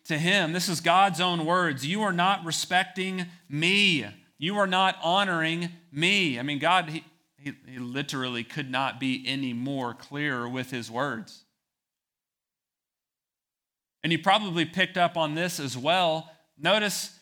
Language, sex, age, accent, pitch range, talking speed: English, male, 40-59, American, 140-180 Hz, 145 wpm